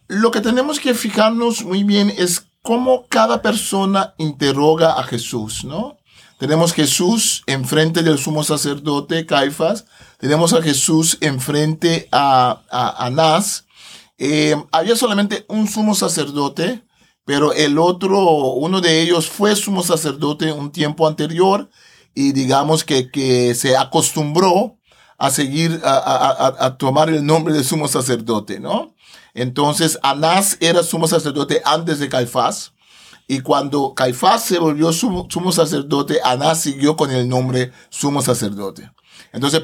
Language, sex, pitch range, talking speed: Spanish, male, 140-185 Hz, 135 wpm